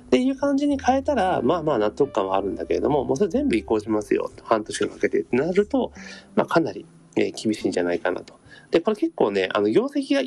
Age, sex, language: 40-59, male, Japanese